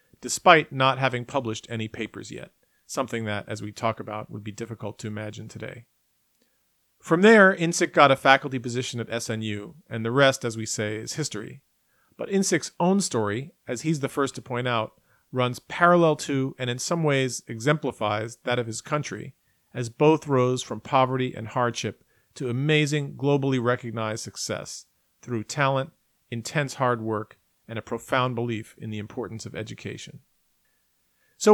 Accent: American